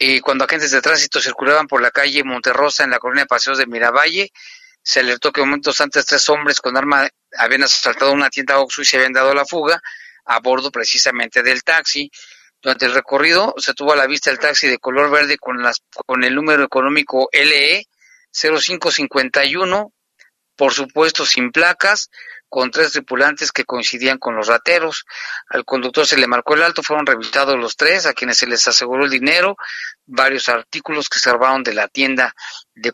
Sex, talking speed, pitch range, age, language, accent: male, 185 wpm, 130-160 Hz, 40-59, Spanish, Mexican